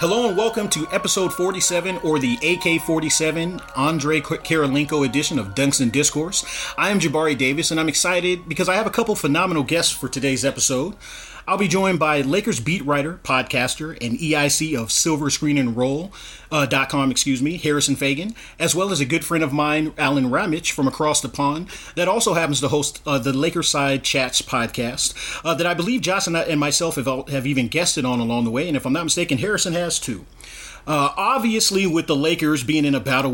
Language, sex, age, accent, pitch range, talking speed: English, male, 30-49, American, 135-170 Hz, 200 wpm